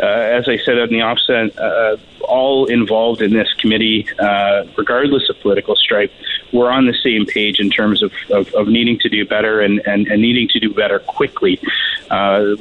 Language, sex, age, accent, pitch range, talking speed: English, male, 30-49, American, 105-145 Hz, 195 wpm